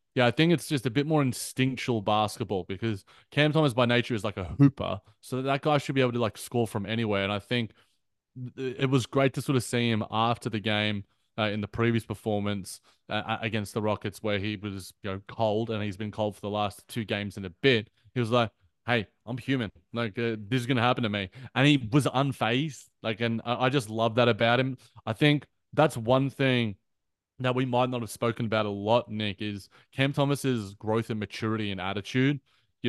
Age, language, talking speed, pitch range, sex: 20-39, English, 225 wpm, 105-125 Hz, male